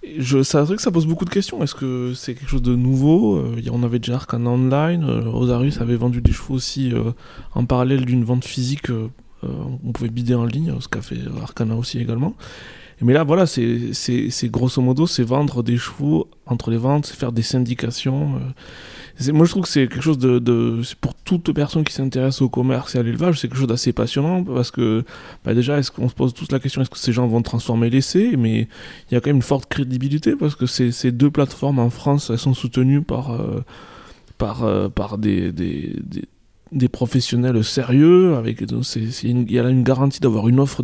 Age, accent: 20-39, French